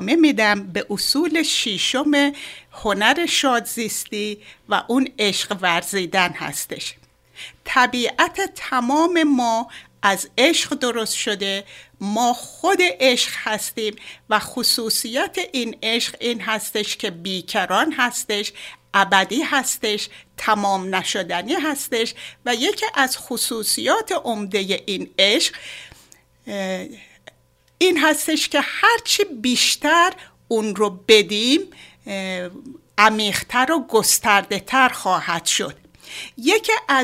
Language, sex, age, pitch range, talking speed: Persian, female, 60-79, 210-290 Hz, 95 wpm